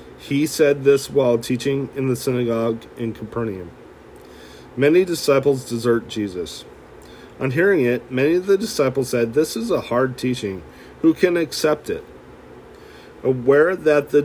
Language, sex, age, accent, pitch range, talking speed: English, male, 40-59, American, 115-140 Hz, 145 wpm